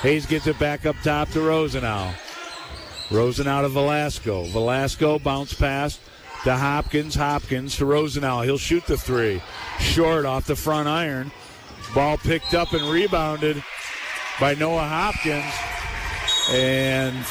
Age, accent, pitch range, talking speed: 50-69, American, 130-160 Hz, 130 wpm